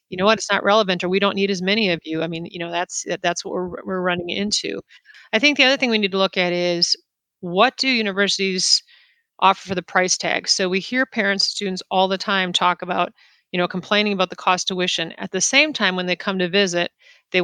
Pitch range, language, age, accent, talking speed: 180-205 Hz, English, 30-49, American, 250 wpm